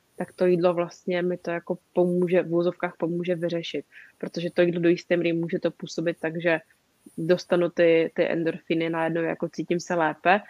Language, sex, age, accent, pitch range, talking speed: Czech, female, 20-39, native, 165-180 Hz, 185 wpm